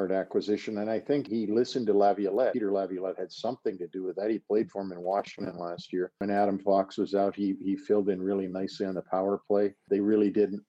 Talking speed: 235 wpm